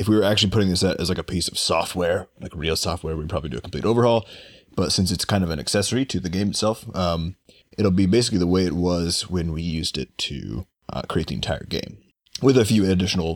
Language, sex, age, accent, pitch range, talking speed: English, male, 30-49, American, 85-105 Hz, 245 wpm